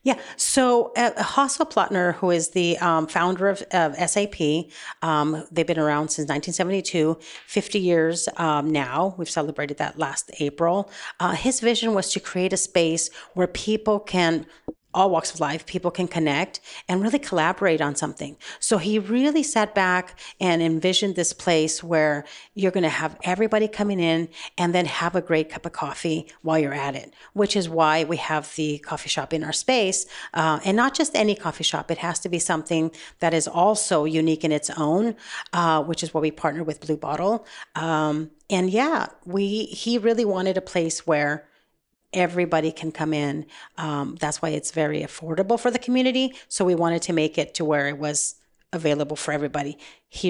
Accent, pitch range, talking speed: American, 155-190 Hz, 185 wpm